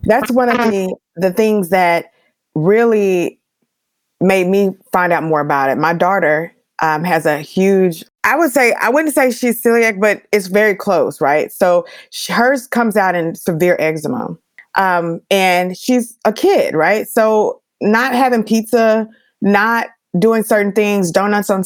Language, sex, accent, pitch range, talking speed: English, female, American, 175-220 Hz, 160 wpm